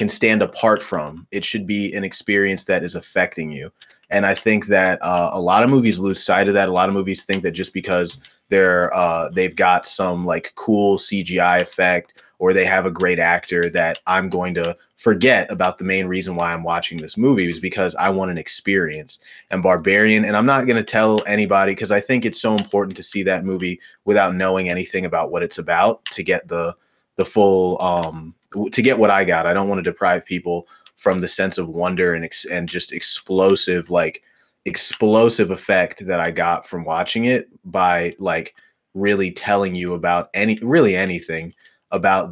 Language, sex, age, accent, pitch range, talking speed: English, male, 20-39, American, 90-100 Hz, 200 wpm